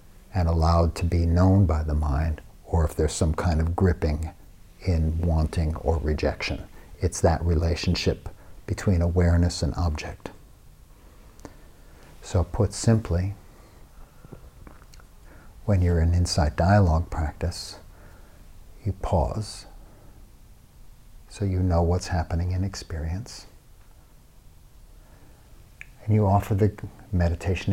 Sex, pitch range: male, 85-105 Hz